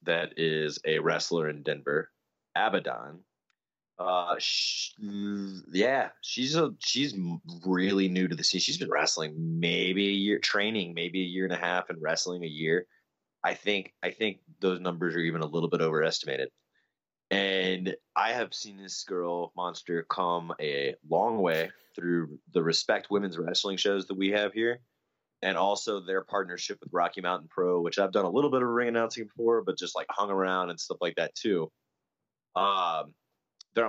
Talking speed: 175 wpm